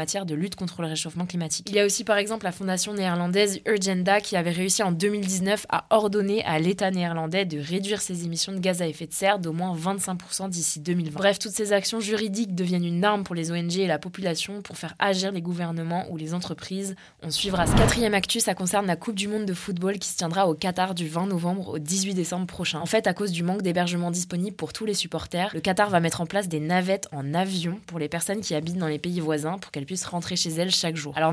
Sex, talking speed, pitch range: female, 245 wpm, 165-195 Hz